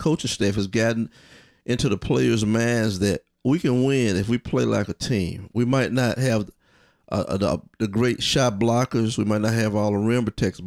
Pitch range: 105-125 Hz